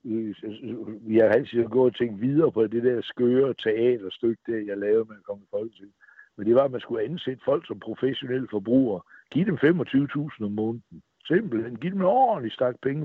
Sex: male